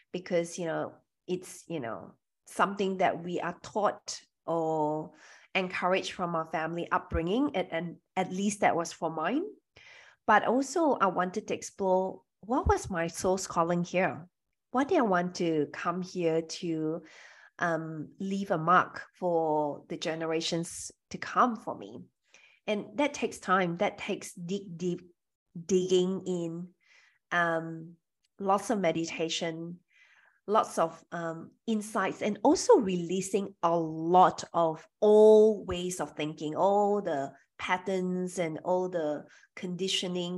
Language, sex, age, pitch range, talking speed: English, female, 20-39, 165-200 Hz, 135 wpm